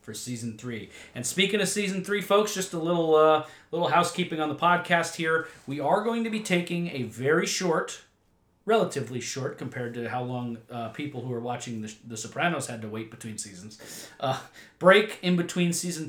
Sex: male